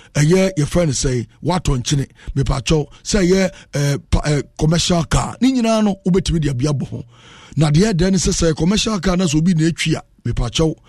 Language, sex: English, male